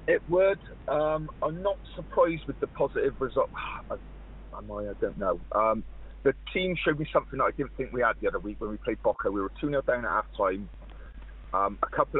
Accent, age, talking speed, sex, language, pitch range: British, 30-49, 225 wpm, male, English, 80-130 Hz